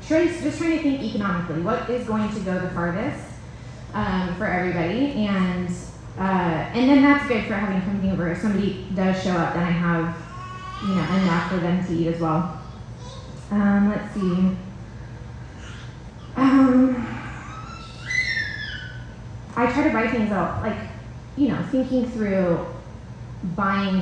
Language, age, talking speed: English, 20-39, 145 wpm